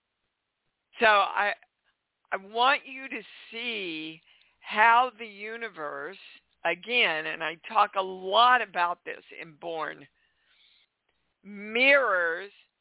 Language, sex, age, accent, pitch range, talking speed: English, female, 50-69, American, 185-255 Hz, 100 wpm